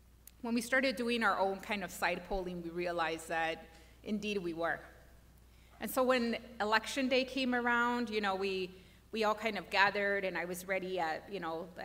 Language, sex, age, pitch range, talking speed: English, female, 30-49, 180-235 Hz, 200 wpm